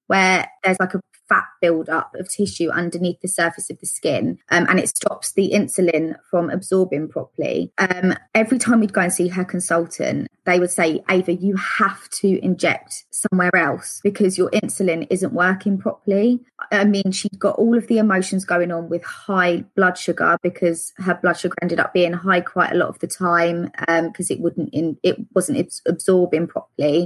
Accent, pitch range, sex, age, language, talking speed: British, 175-200 Hz, female, 20-39, English, 190 wpm